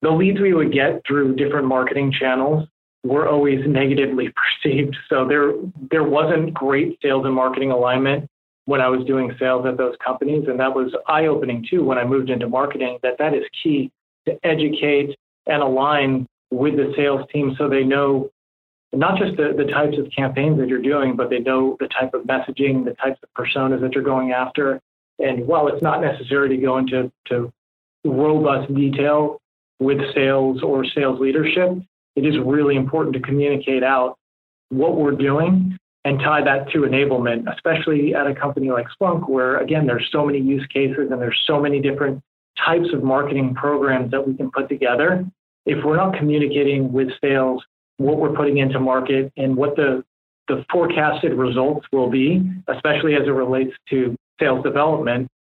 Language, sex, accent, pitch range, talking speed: English, male, American, 130-145 Hz, 180 wpm